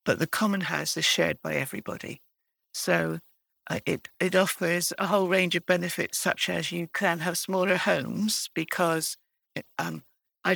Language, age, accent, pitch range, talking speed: English, 60-79, British, 160-195 Hz, 160 wpm